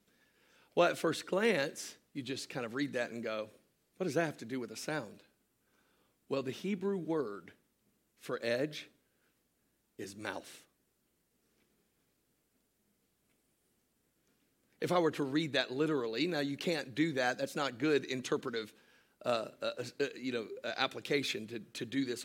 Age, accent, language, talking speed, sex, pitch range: 50-69, American, English, 150 wpm, male, 130-160 Hz